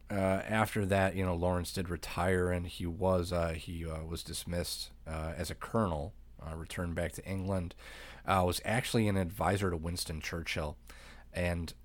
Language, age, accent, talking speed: English, 30-49, American, 175 wpm